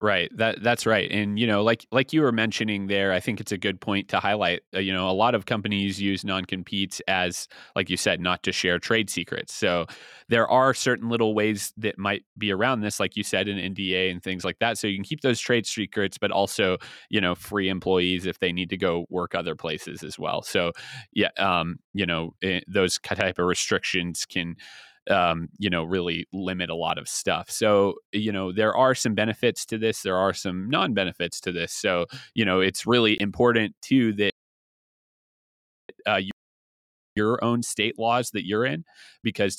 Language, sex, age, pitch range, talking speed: English, male, 20-39, 95-115 Hz, 200 wpm